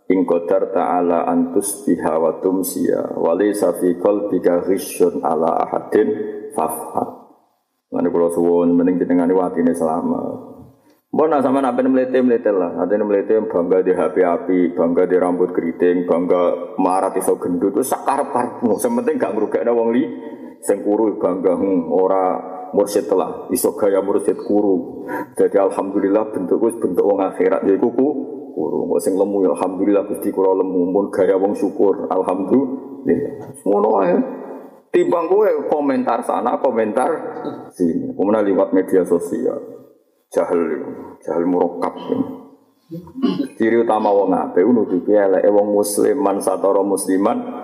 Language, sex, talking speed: Indonesian, male, 130 wpm